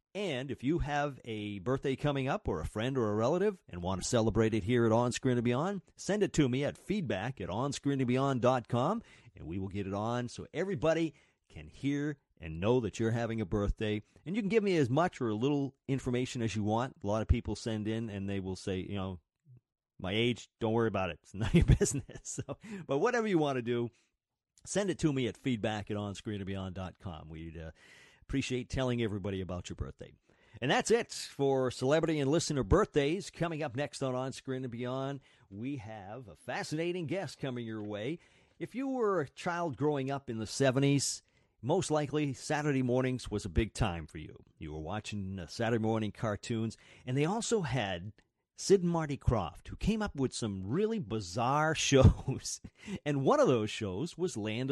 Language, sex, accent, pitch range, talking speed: English, male, American, 105-145 Hz, 200 wpm